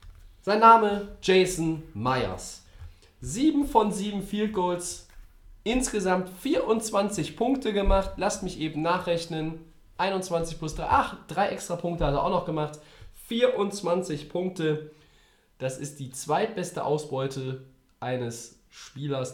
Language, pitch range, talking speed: German, 135-190 Hz, 120 wpm